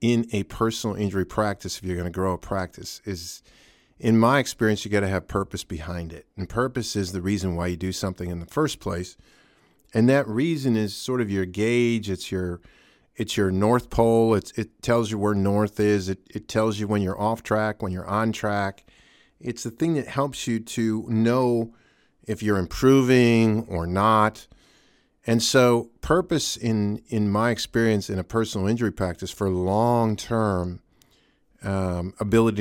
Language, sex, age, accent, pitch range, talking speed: English, male, 40-59, American, 95-115 Hz, 180 wpm